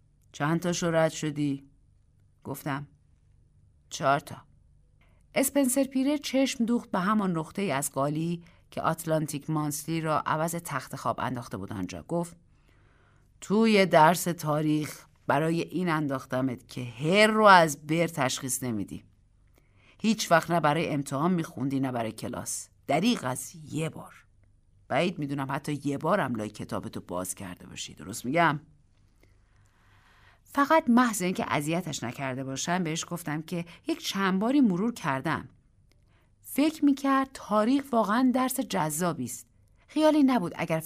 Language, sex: Persian, female